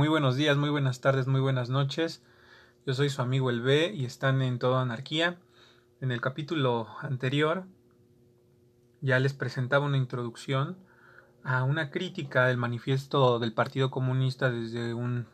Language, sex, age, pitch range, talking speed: Spanish, male, 30-49, 120-135 Hz, 155 wpm